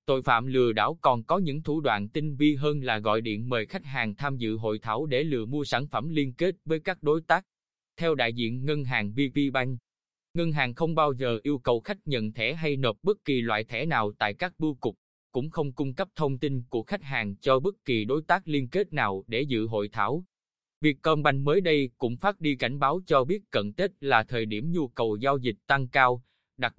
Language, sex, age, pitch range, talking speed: Vietnamese, male, 20-39, 120-155 Hz, 235 wpm